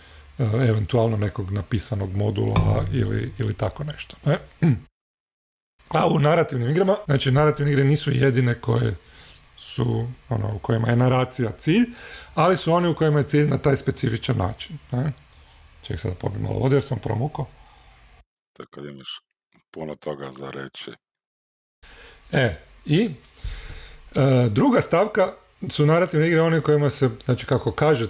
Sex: male